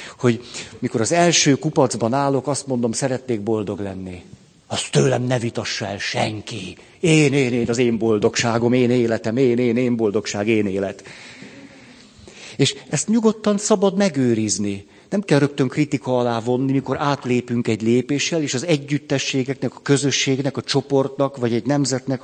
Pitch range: 120-155 Hz